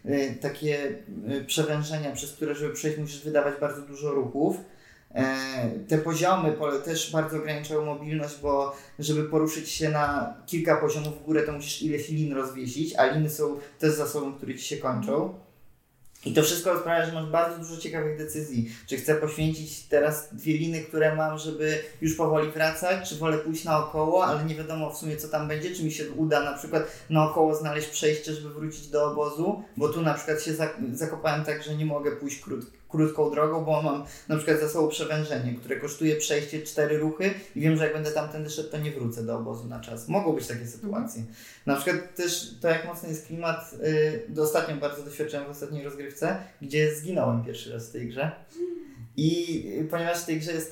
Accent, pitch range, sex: native, 145-160 Hz, male